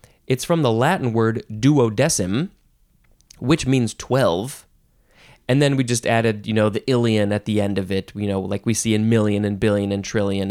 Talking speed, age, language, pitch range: 195 wpm, 30-49, English, 105-150 Hz